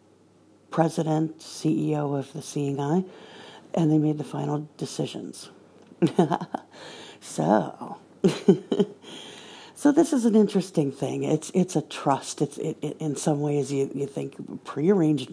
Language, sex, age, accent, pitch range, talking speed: English, female, 60-79, American, 145-185 Hz, 130 wpm